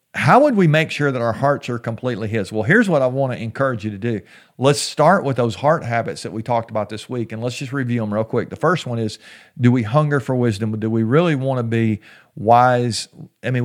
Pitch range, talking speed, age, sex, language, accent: 115-145 Hz, 255 wpm, 50-69, male, English, American